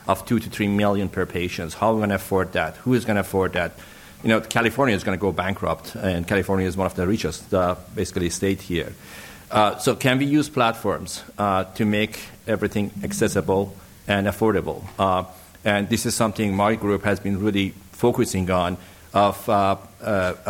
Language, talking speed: English, 195 wpm